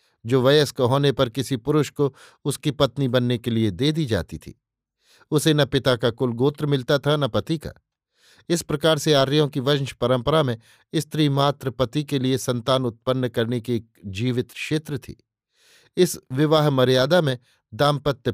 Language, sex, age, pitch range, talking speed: Hindi, male, 50-69, 125-150 Hz, 175 wpm